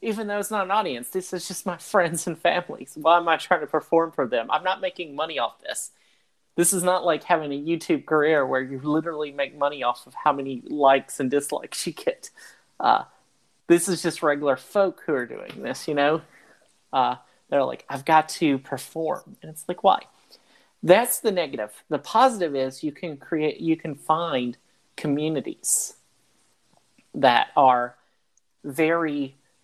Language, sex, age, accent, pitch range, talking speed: English, male, 30-49, American, 135-170 Hz, 180 wpm